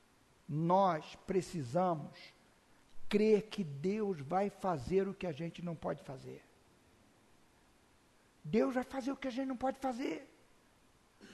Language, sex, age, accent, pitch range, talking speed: Portuguese, male, 60-79, Brazilian, 215-275 Hz, 130 wpm